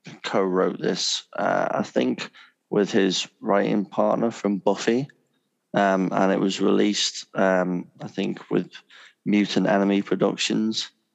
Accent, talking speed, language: British, 125 wpm, English